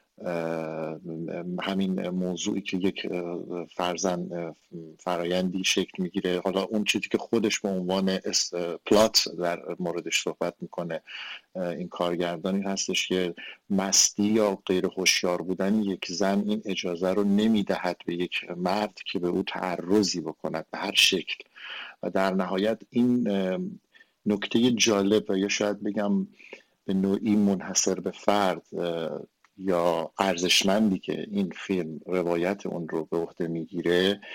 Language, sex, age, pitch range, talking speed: Persian, male, 50-69, 90-105 Hz, 130 wpm